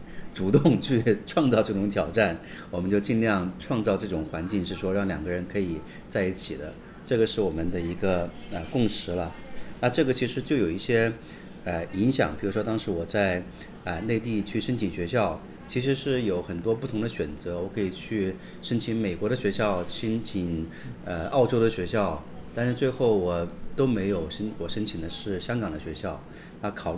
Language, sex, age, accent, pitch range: Chinese, male, 30-49, native, 90-115 Hz